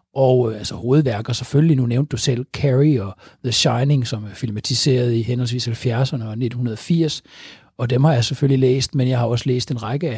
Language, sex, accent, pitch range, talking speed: Danish, male, native, 120-150 Hz, 205 wpm